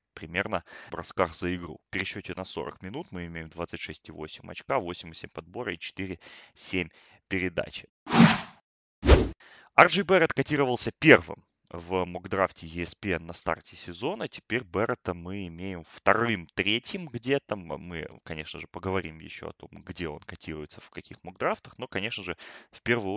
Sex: male